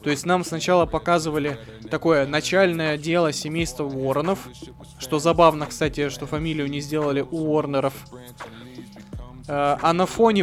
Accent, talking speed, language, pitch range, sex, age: native, 125 wpm, Russian, 150-185 Hz, male, 20-39